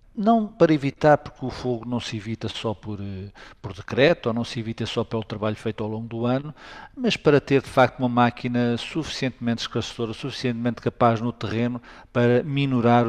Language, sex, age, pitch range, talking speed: Portuguese, male, 50-69, 110-130 Hz, 185 wpm